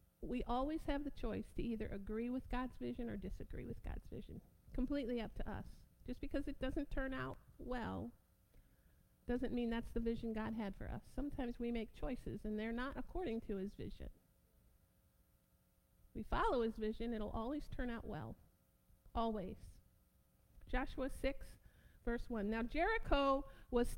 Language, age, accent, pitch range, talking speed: English, 50-69, American, 230-295 Hz, 160 wpm